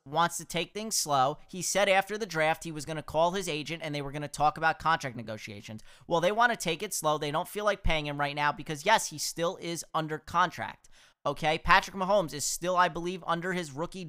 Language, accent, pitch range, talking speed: English, American, 145-180 Hz, 245 wpm